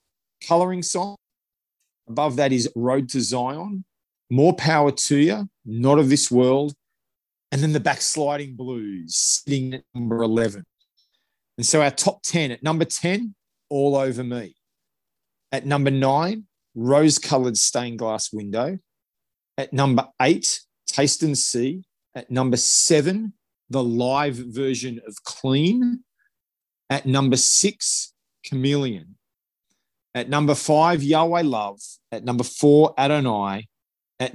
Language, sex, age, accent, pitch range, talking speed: English, male, 40-59, Australian, 120-155 Hz, 125 wpm